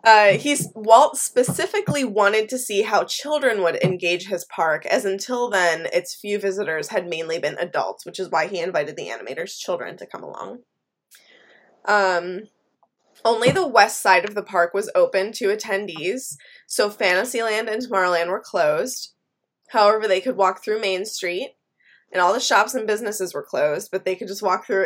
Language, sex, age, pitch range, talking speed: English, female, 20-39, 185-230 Hz, 175 wpm